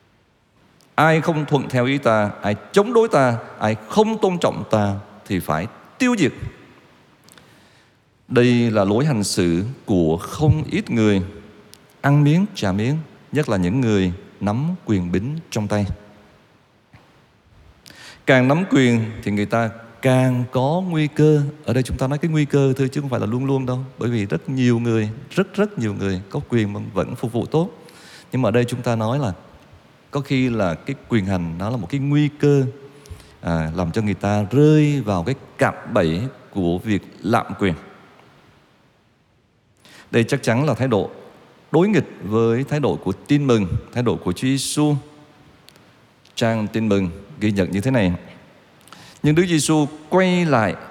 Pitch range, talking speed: 105-150 Hz, 175 wpm